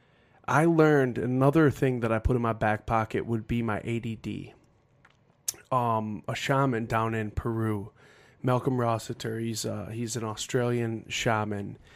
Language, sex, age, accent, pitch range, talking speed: English, male, 20-39, American, 110-130 Hz, 145 wpm